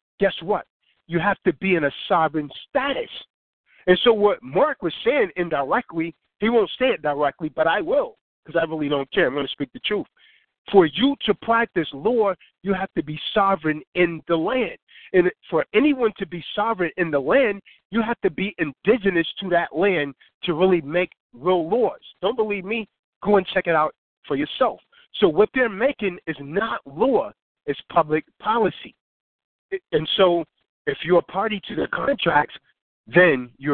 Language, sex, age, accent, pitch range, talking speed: English, male, 50-69, American, 155-200 Hz, 180 wpm